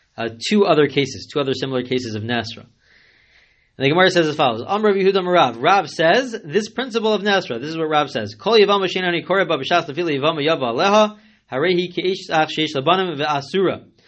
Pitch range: 125-185 Hz